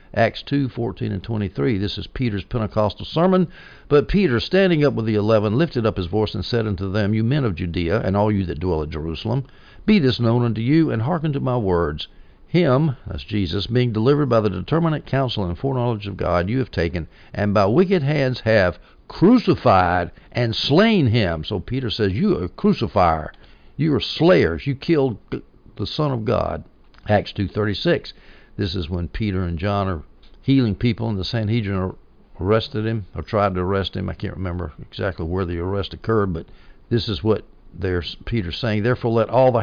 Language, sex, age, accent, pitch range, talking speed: English, male, 60-79, American, 95-125 Hz, 195 wpm